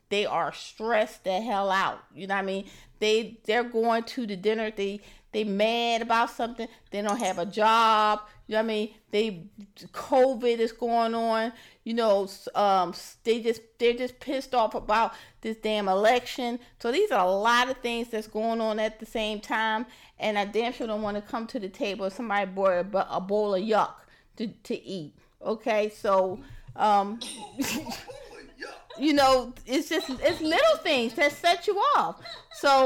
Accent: American